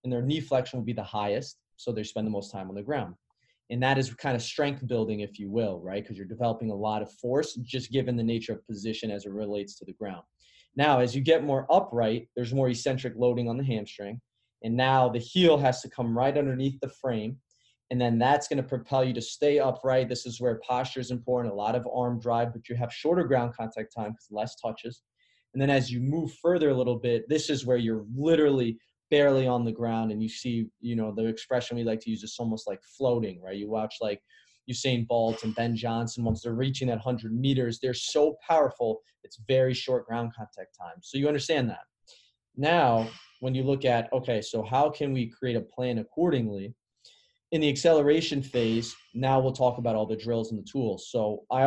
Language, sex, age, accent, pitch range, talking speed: English, male, 20-39, American, 115-130 Hz, 225 wpm